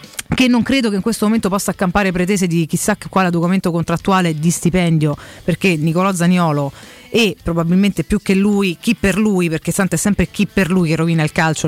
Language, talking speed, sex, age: Italian, 200 wpm, female, 30-49